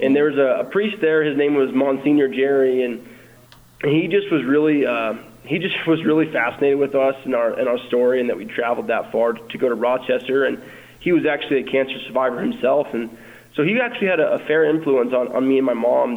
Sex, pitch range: male, 125-150 Hz